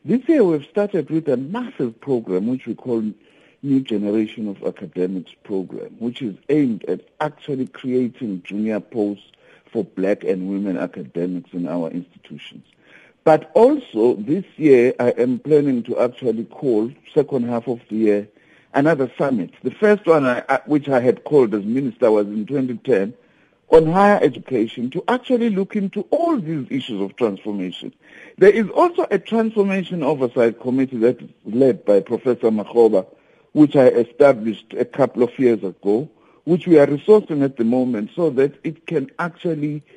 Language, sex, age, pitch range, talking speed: English, male, 60-79, 110-165 Hz, 160 wpm